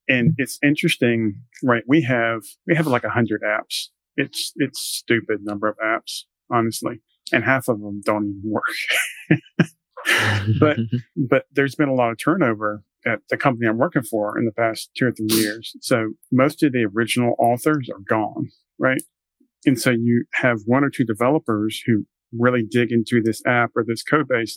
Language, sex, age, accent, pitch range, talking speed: English, male, 40-59, American, 110-130 Hz, 180 wpm